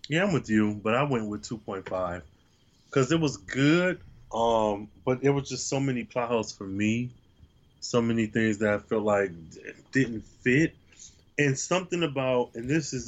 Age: 20-39